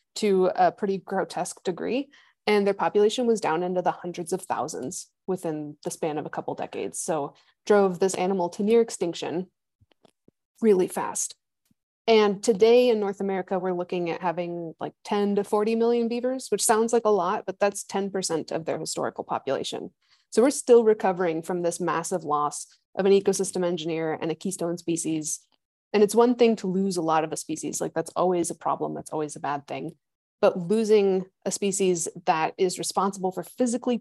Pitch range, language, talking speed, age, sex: 175-210 Hz, English, 185 wpm, 20-39, female